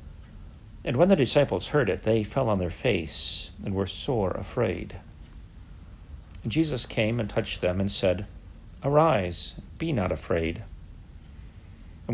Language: English